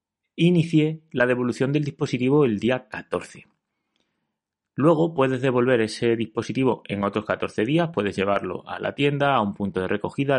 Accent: Spanish